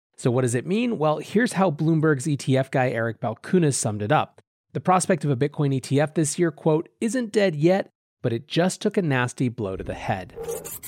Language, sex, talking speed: English, male, 210 wpm